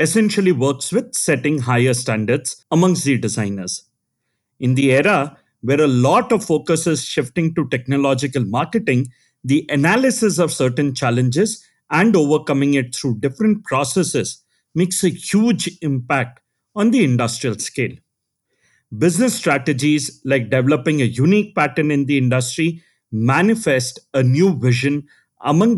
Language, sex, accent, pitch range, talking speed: English, male, Indian, 130-180 Hz, 130 wpm